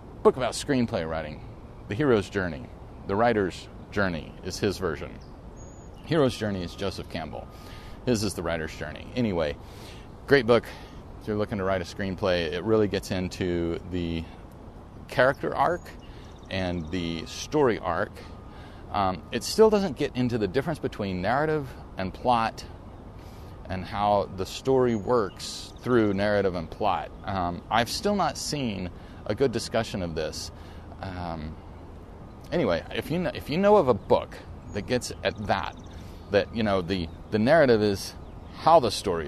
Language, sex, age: English, male, 40-59